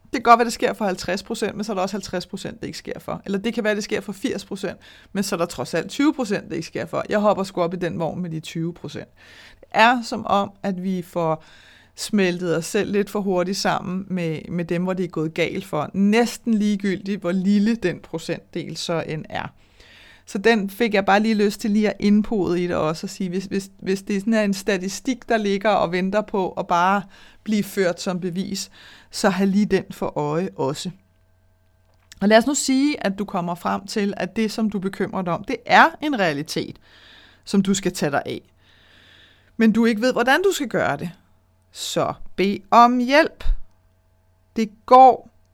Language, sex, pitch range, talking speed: Danish, female, 175-215 Hz, 215 wpm